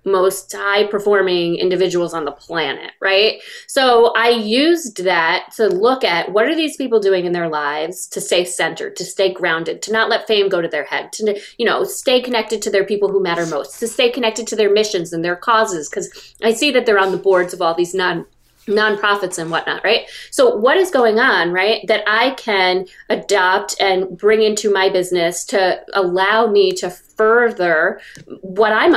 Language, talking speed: English, 200 wpm